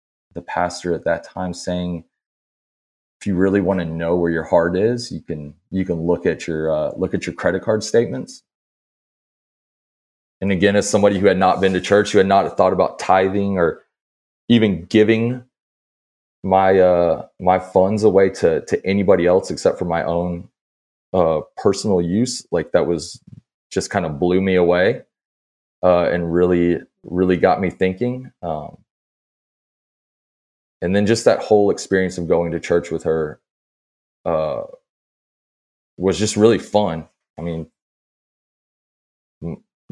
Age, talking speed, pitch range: 20-39, 155 wpm, 80-95 Hz